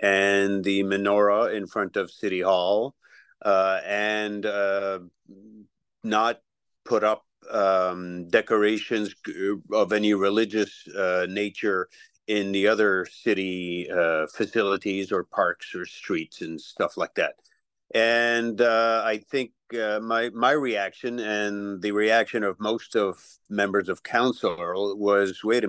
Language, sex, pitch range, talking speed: English, male, 100-115 Hz, 130 wpm